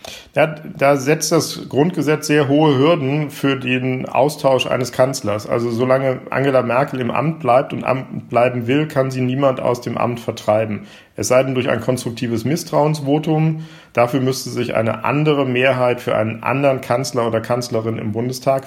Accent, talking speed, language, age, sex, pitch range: German, 160 wpm, German, 50-69, male, 120-145 Hz